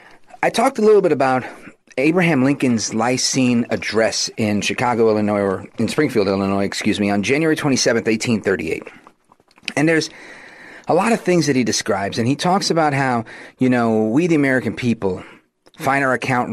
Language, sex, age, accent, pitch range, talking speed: English, male, 40-59, American, 115-160 Hz, 180 wpm